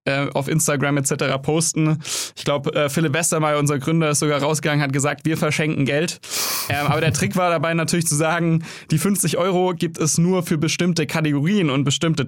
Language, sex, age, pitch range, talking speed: German, male, 20-39, 145-165 Hz, 190 wpm